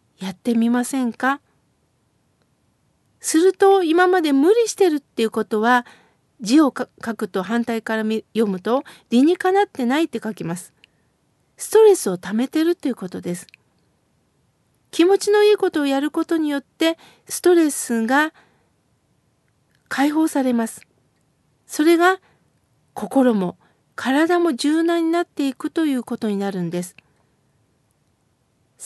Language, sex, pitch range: Japanese, female, 225-315 Hz